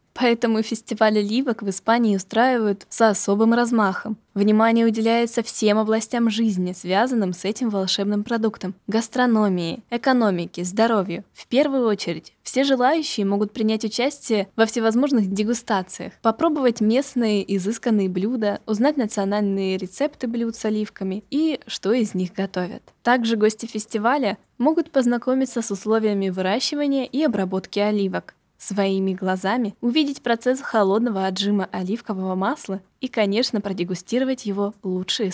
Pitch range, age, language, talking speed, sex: 195-245 Hz, 10-29, Russian, 120 wpm, female